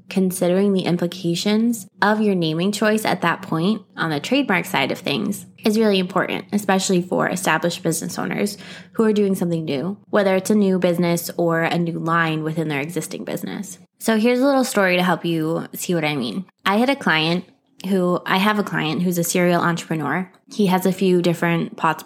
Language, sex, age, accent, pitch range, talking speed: English, female, 20-39, American, 170-205 Hz, 200 wpm